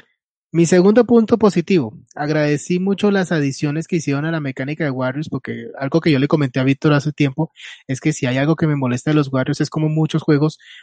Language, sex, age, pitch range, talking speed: Spanish, male, 20-39, 135-160 Hz, 220 wpm